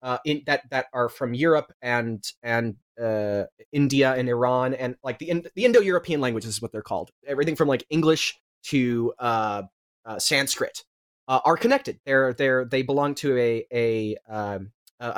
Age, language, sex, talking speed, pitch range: 20-39, English, male, 170 wpm, 115-145 Hz